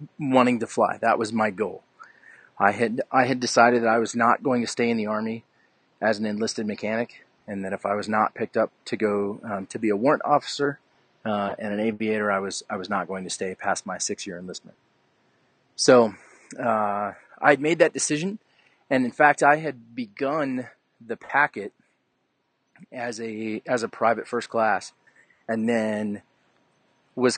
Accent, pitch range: American, 105-125 Hz